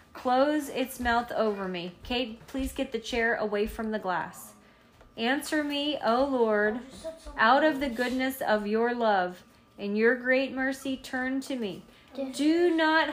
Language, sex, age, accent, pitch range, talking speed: English, female, 30-49, American, 205-270 Hz, 155 wpm